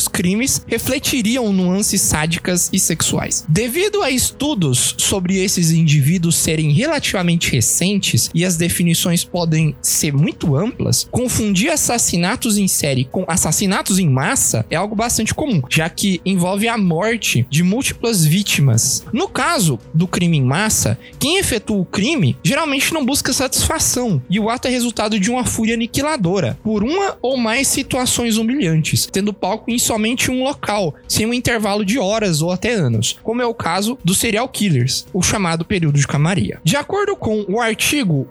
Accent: Brazilian